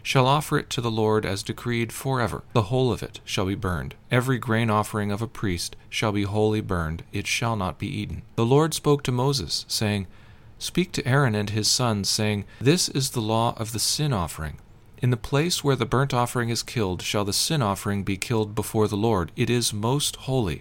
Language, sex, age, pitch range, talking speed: English, male, 40-59, 105-130 Hz, 215 wpm